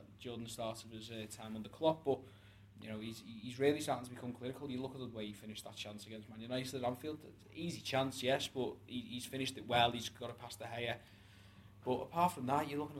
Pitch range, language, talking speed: 105-125 Hz, English, 250 wpm